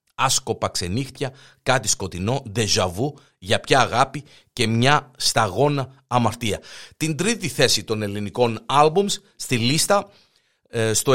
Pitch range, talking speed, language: 115-155 Hz, 115 wpm, Greek